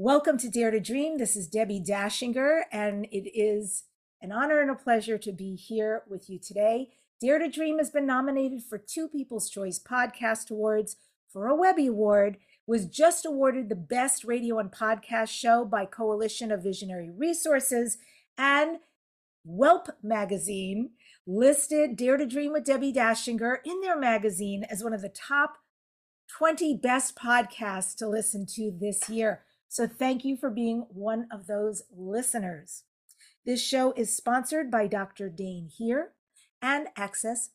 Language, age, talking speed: English, 50-69, 155 wpm